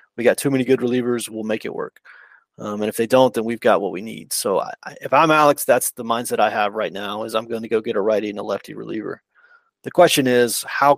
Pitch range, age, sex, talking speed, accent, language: 115-130 Hz, 30-49, male, 275 wpm, American, English